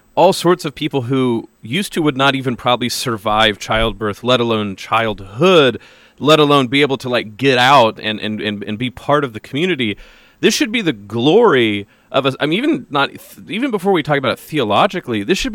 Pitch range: 115-155 Hz